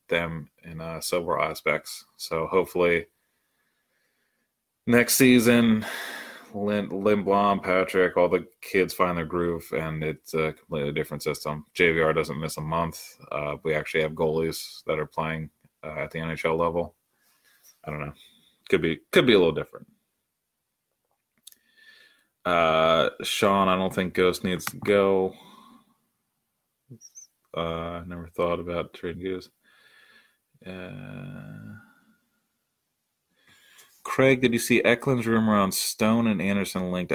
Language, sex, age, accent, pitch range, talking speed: English, male, 20-39, American, 80-100 Hz, 130 wpm